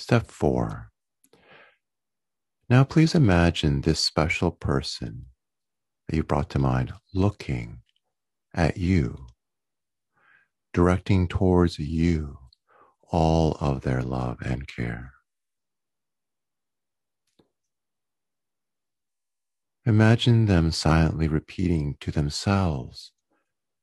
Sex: male